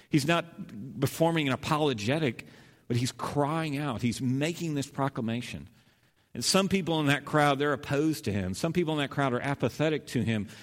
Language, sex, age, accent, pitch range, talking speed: English, male, 50-69, American, 115-150 Hz, 180 wpm